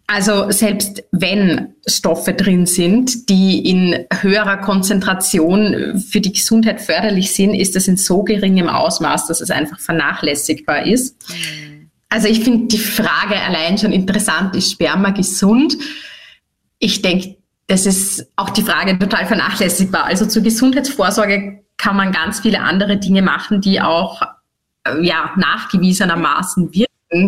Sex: female